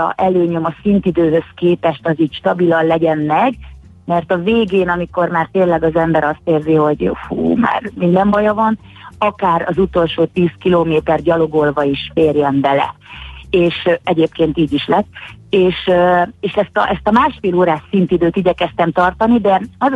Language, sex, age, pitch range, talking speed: Hungarian, female, 30-49, 160-190 Hz, 155 wpm